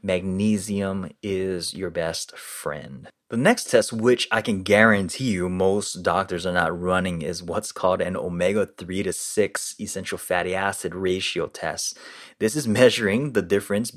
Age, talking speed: 20-39, 155 wpm